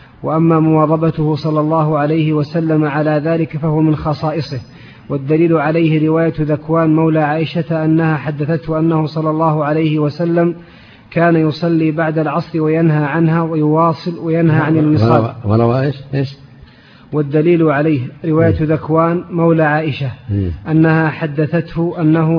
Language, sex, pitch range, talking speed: Arabic, male, 155-165 Hz, 130 wpm